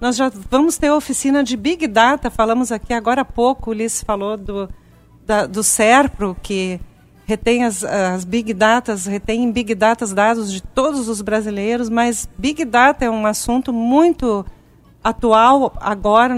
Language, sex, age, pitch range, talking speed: Portuguese, female, 40-59, 225-275 Hz, 160 wpm